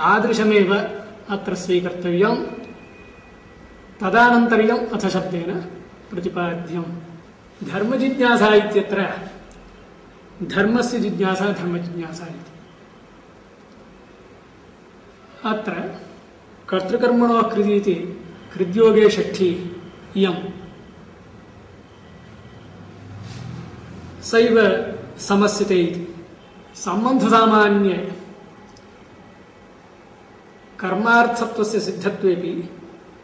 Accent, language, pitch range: Indian, English, 180-210 Hz